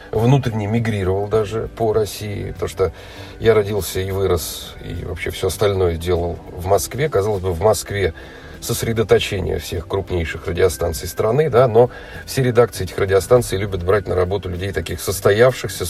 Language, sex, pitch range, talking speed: Russian, male, 95-120 Hz, 150 wpm